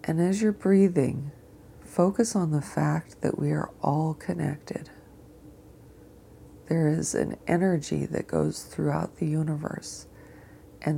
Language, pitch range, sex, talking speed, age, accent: English, 135-165 Hz, female, 125 wpm, 40-59, American